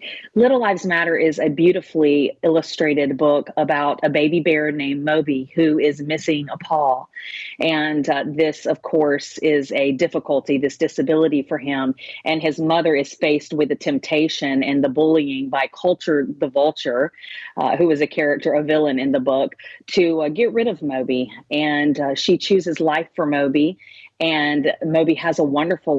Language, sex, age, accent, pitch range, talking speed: English, female, 40-59, American, 140-165 Hz, 170 wpm